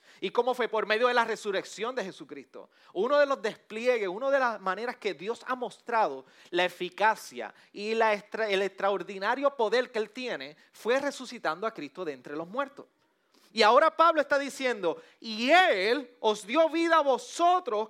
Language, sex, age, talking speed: Spanish, male, 30-49, 170 wpm